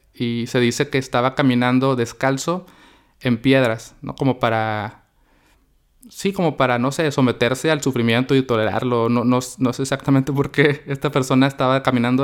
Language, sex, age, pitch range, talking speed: Spanish, male, 20-39, 120-145 Hz, 160 wpm